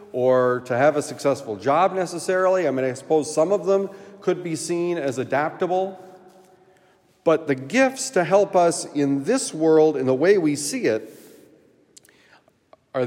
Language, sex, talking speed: English, male, 160 wpm